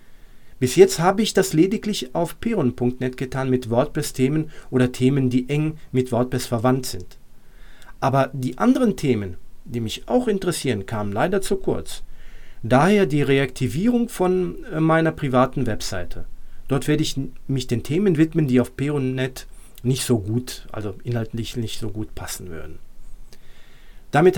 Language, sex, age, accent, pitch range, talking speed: German, male, 40-59, German, 125-180 Hz, 145 wpm